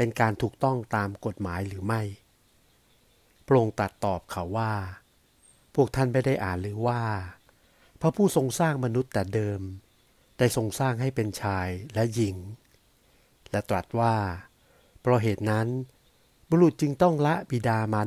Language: Thai